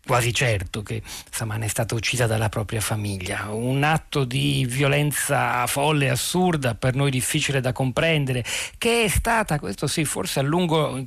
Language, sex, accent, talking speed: Italian, male, native, 170 wpm